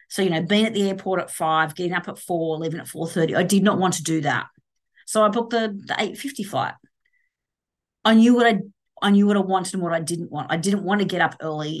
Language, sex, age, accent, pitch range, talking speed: English, female, 40-59, Australian, 160-205 Hz, 260 wpm